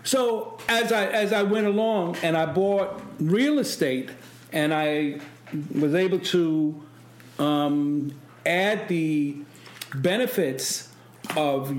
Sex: male